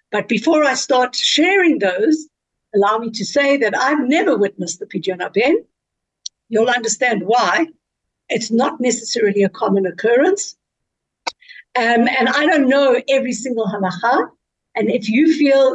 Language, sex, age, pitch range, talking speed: English, female, 60-79, 210-275 Hz, 145 wpm